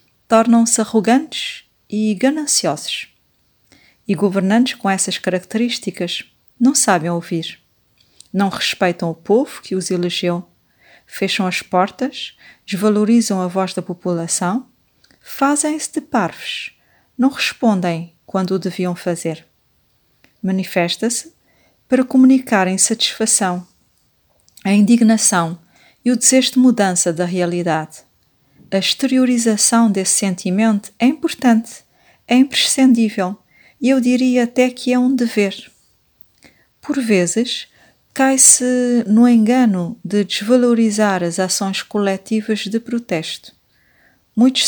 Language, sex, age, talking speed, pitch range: Portuguese, female, 40-59, 105 wpm, 185-245 Hz